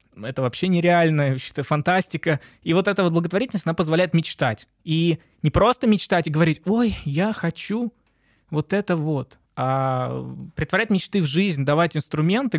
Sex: male